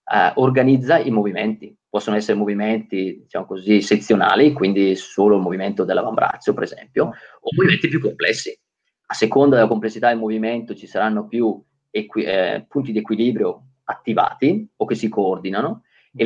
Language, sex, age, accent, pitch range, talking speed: Italian, male, 30-49, native, 110-140 Hz, 150 wpm